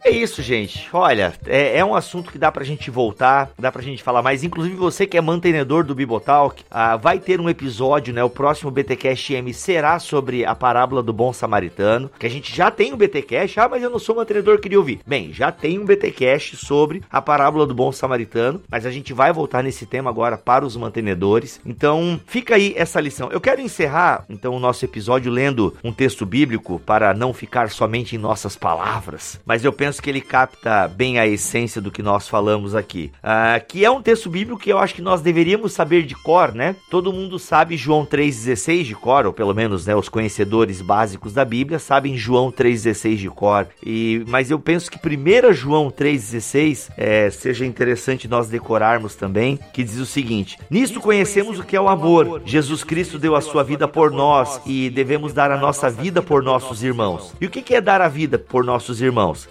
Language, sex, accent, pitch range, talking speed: Portuguese, male, Brazilian, 115-165 Hz, 210 wpm